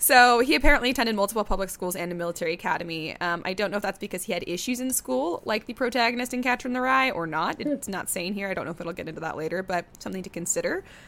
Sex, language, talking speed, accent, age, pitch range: female, English, 270 wpm, American, 20-39, 175-215 Hz